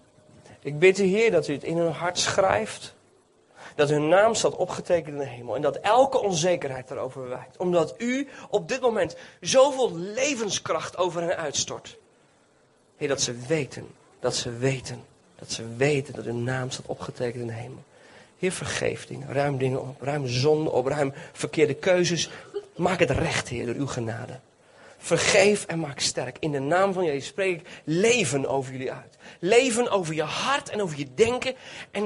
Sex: male